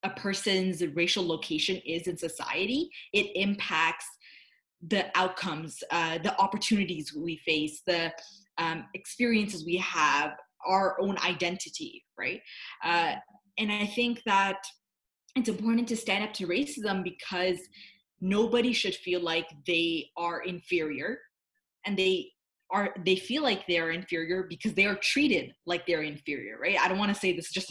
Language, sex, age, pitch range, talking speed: English, female, 20-39, 175-210 Hz, 150 wpm